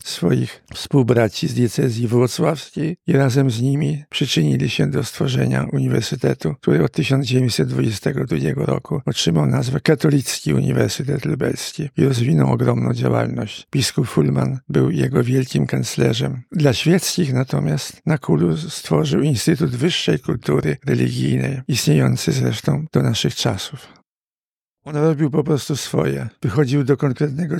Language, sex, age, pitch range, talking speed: Polish, male, 60-79, 130-150 Hz, 120 wpm